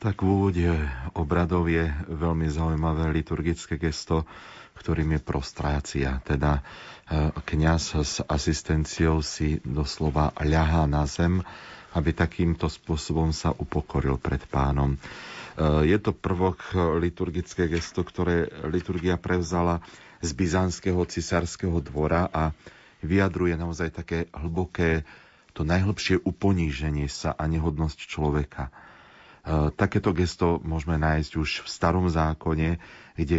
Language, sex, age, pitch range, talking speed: Slovak, male, 40-59, 75-90 Hz, 110 wpm